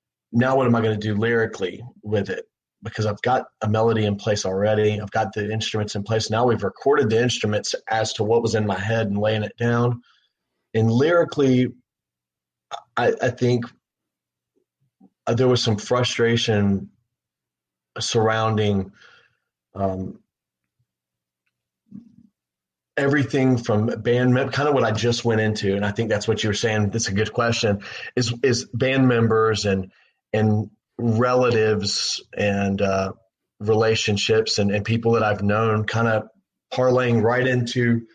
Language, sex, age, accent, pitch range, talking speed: English, male, 30-49, American, 105-115 Hz, 150 wpm